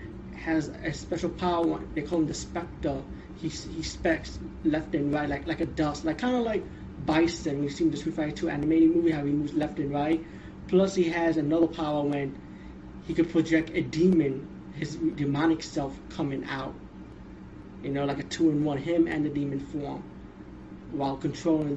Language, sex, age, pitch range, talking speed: English, male, 20-39, 145-165 Hz, 185 wpm